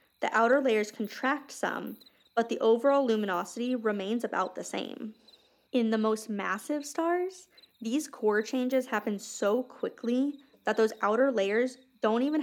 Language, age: English, 20-39